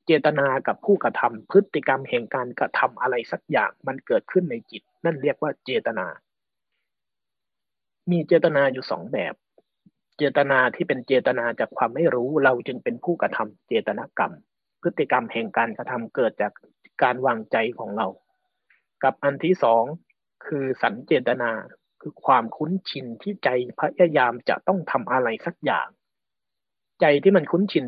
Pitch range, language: 135-190 Hz, Thai